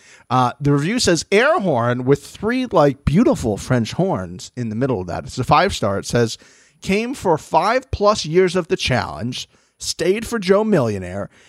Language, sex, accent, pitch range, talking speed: English, male, American, 110-150 Hz, 180 wpm